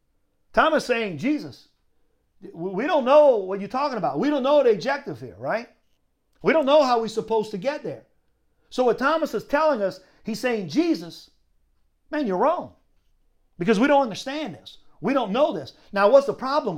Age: 50-69